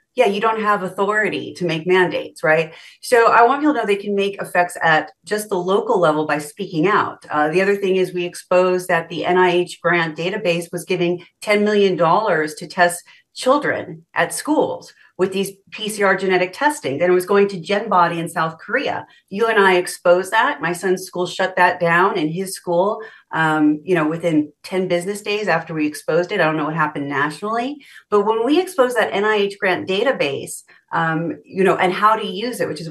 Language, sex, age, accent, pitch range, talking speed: English, female, 40-59, American, 165-205 Hz, 200 wpm